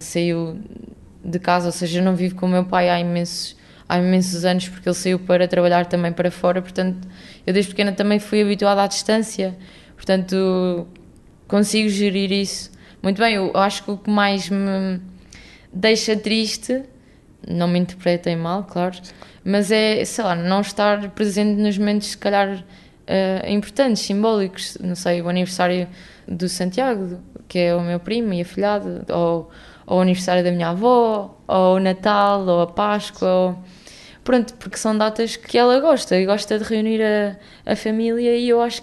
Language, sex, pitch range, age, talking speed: Portuguese, female, 180-215 Hz, 20-39, 175 wpm